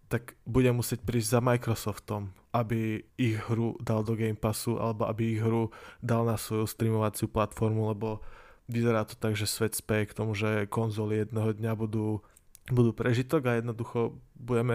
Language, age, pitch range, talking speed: Slovak, 20-39, 110-120 Hz, 165 wpm